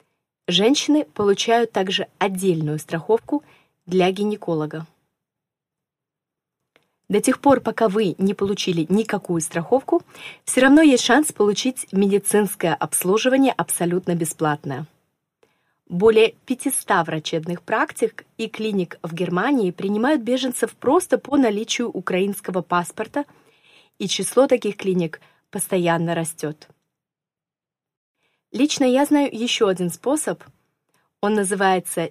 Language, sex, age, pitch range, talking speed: Russian, female, 20-39, 175-230 Hz, 100 wpm